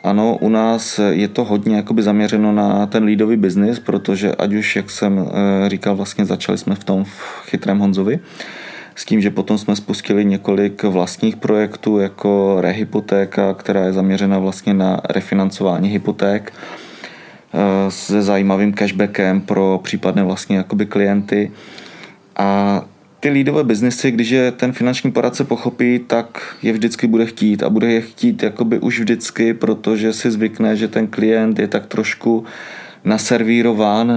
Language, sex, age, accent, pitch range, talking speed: Czech, male, 20-39, native, 100-115 Hz, 145 wpm